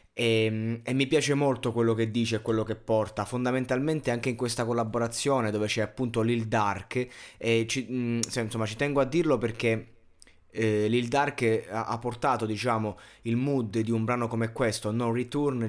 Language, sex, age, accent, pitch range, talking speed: Italian, male, 20-39, native, 110-135 Hz, 185 wpm